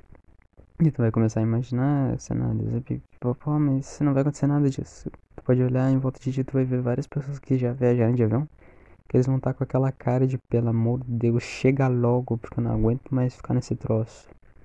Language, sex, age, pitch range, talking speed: Portuguese, male, 20-39, 110-130 Hz, 230 wpm